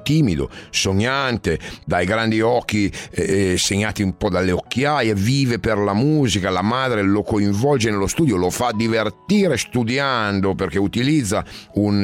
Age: 40-59